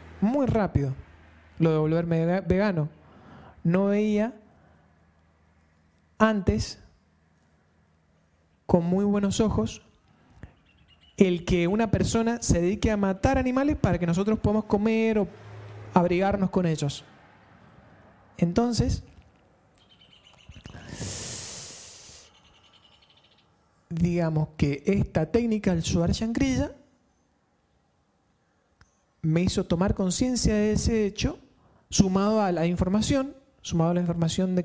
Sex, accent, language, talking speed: male, Argentinian, Spanish, 95 wpm